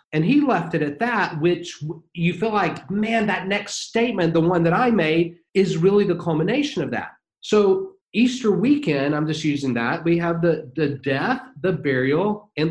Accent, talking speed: American, 190 wpm